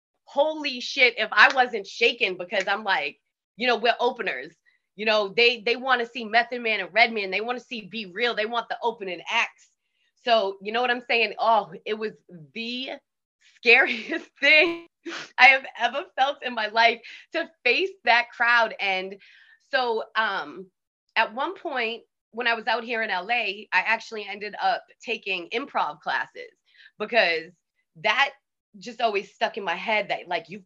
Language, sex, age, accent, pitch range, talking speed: English, female, 20-39, American, 185-240 Hz, 175 wpm